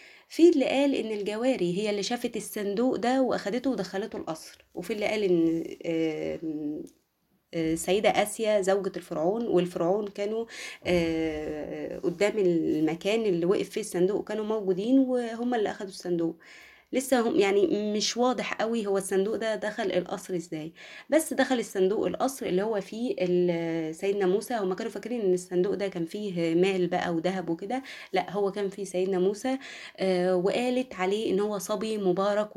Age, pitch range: 20-39, 180-215 Hz